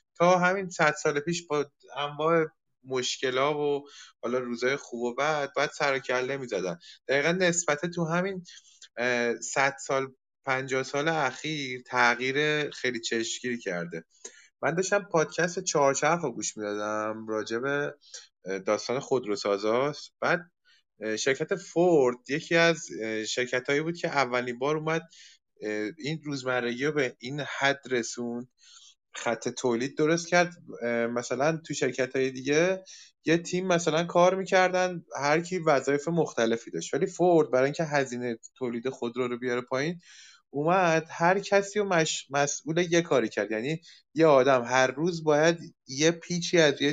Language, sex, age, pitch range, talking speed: Persian, male, 30-49, 125-165 Hz, 140 wpm